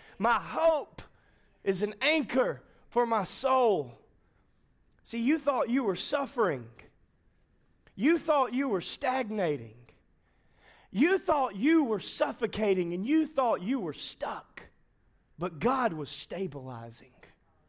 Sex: male